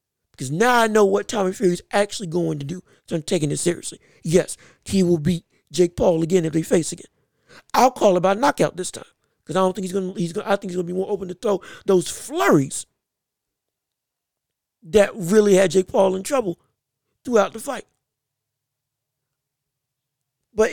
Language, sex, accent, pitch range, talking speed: English, male, American, 180-235 Hz, 190 wpm